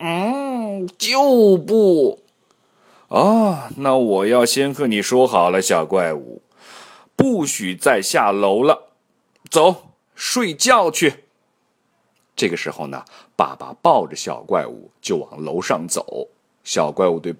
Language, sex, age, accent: Chinese, male, 30-49, native